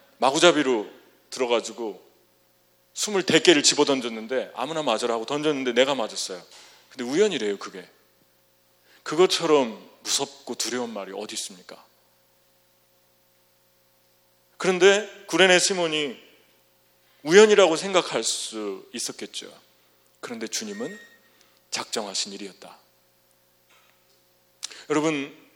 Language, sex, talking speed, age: English, male, 75 wpm, 40-59